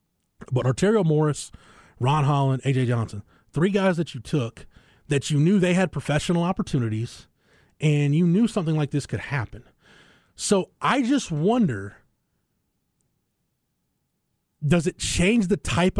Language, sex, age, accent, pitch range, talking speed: English, male, 30-49, American, 125-160 Hz, 135 wpm